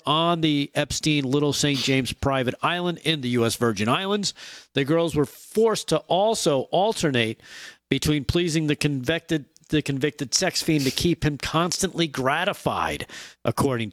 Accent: American